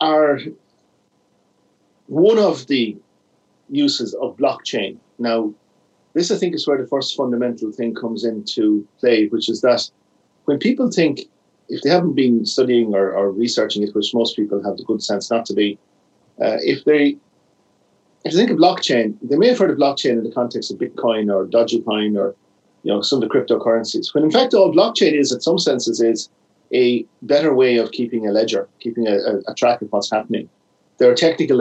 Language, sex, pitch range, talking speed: English, male, 105-130 Hz, 190 wpm